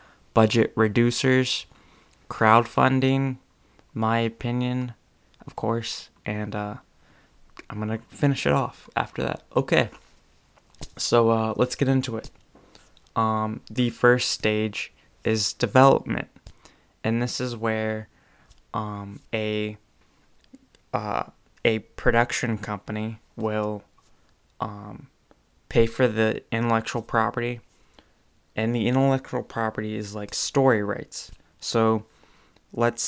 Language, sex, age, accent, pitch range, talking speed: English, male, 20-39, American, 105-120 Hz, 105 wpm